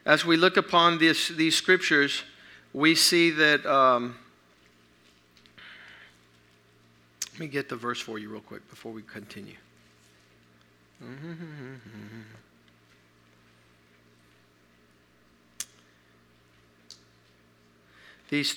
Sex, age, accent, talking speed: male, 50-69, American, 75 wpm